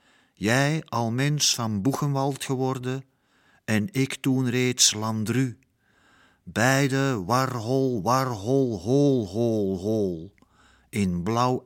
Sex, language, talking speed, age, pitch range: male, Dutch, 100 wpm, 50-69, 105-135 Hz